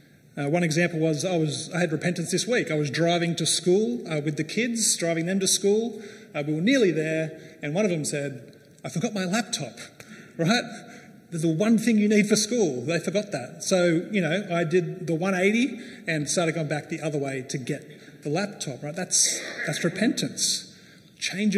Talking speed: 205 wpm